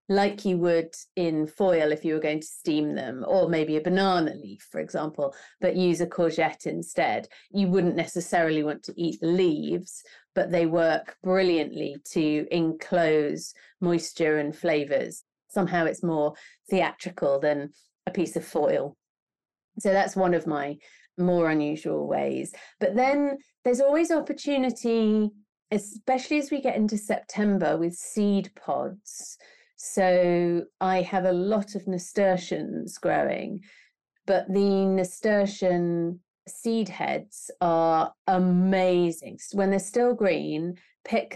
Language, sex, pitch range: English, female, 165-205 Hz